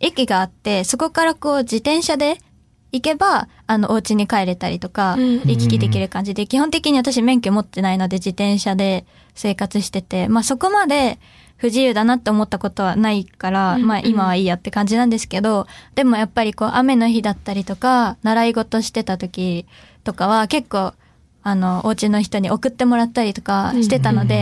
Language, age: Japanese, 20-39